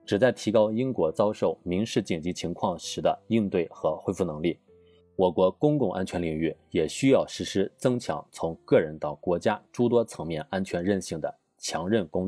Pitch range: 90-130 Hz